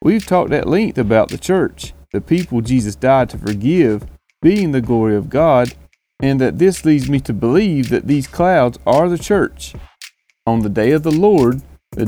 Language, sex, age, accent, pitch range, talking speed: English, male, 30-49, American, 115-170 Hz, 190 wpm